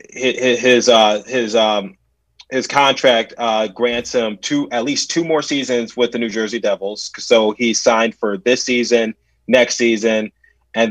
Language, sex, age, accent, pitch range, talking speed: English, male, 20-39, American, 105-120 Hz, 160 wpm